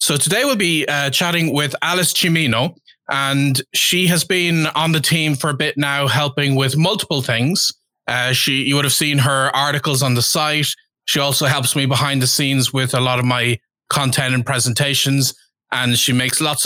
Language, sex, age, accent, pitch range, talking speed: English, male, 20-39, Irish, 130-165 Hz, 195 wpm